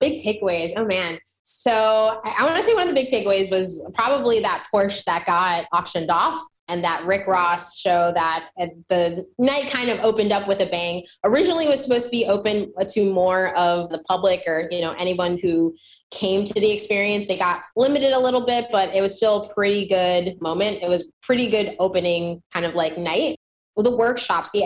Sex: female